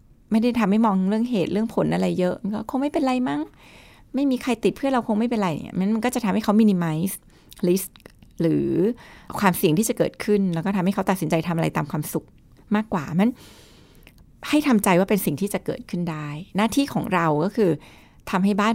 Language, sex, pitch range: Thai, female, 170-225 Hz